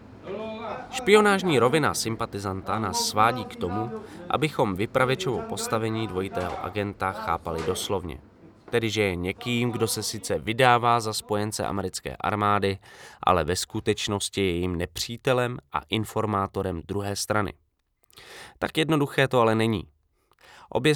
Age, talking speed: 20-39, 115 wpm